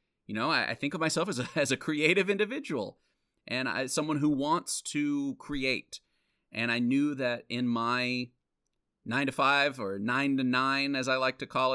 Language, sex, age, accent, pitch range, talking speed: English, male, 30-49, American, 120-155 Hz, 180 wpm